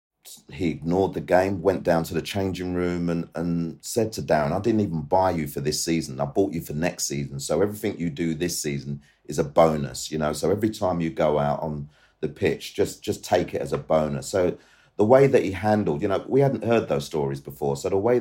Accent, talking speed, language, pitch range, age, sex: British, 240 wpm, English, 75-90 Hz, 40-59, male